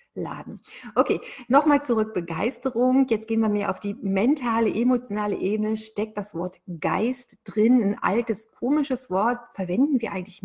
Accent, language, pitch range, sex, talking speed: German, German, 195-240 Hz, female, 150 wpm